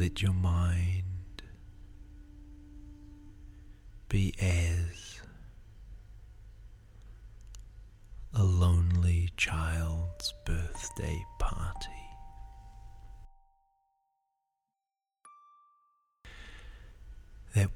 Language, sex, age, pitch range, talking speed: English, male, 40-59, 90-105 Hz, 35 wpm